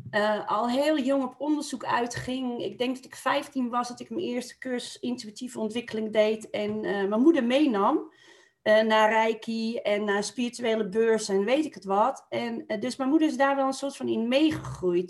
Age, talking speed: 40-59, 205 wpm